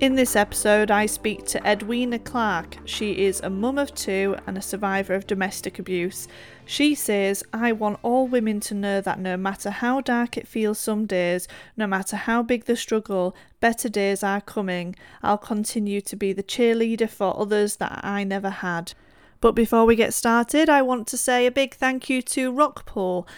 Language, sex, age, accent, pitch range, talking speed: English, female, 30-49, British, 200-240 Hz, 190 wpm